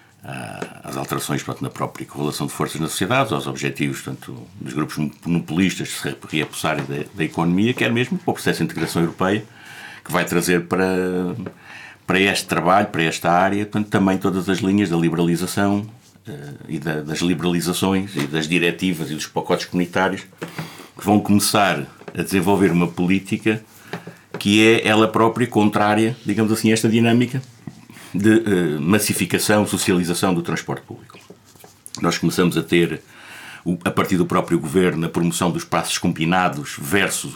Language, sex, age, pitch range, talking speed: Portuguese, male, 50-69, 85-105 Hz, 155 wpm